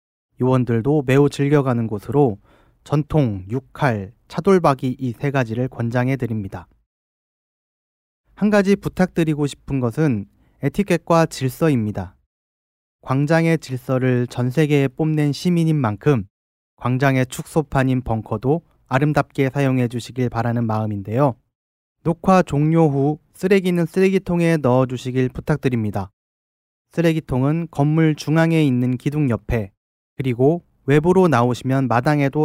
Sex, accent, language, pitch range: male, native, Korean, 115-155 Hz